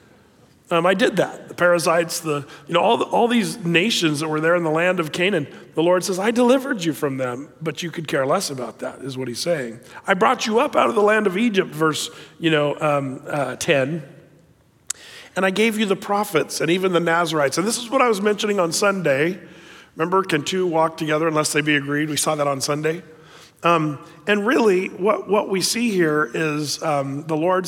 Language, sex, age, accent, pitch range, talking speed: English, male, 40-59, American, 150-190 Hz, 220 wpm